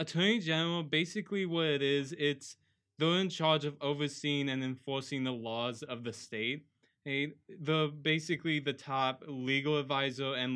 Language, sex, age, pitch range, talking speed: English, male, 20-39, 130-150 Hz, 150 wpm